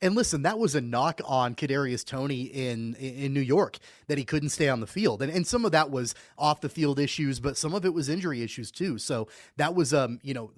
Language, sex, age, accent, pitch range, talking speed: English, male, 30-49, American, 120-155 Hz, 255 wpm